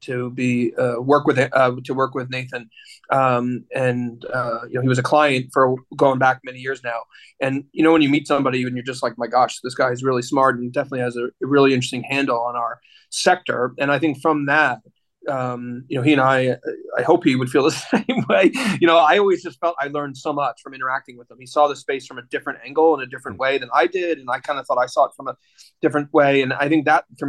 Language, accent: English, American